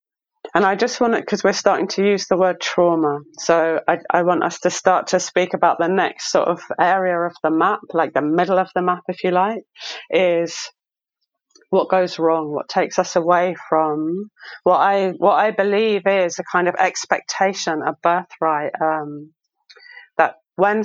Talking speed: 180 wpm